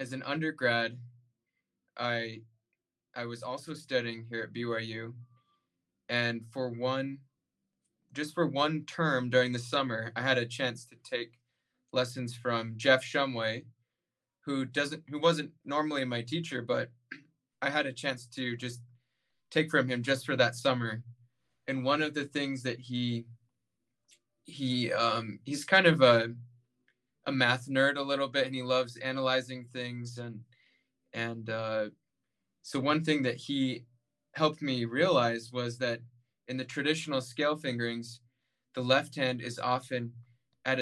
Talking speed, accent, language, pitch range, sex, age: 145 wpm, American, English, 120-135 Hz, male, 20-39